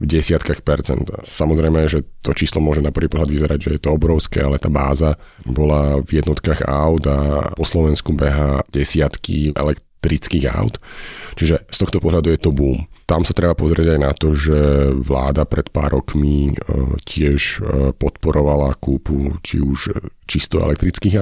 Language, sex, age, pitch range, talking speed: Slovak, male, 40-59, 70-80 Hz, 155 wpm